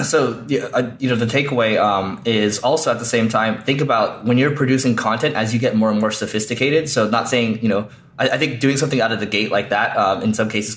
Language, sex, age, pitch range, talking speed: English, male, 20-39, 100-115 Hz, 250 wpm